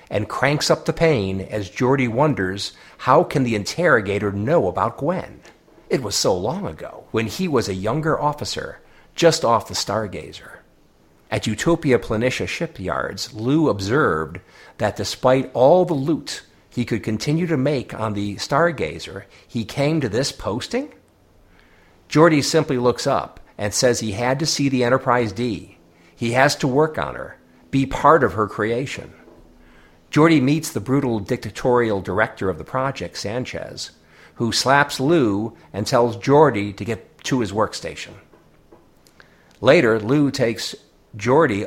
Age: 50-69